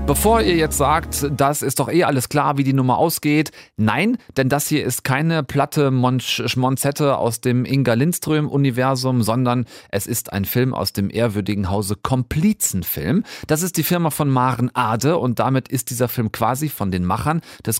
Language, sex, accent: German, male, German